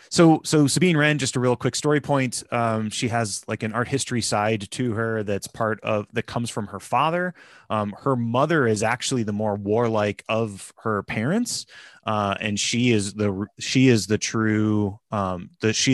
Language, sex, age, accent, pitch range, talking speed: English, male, 30-49, American, 105-125 Hz, 170 wpm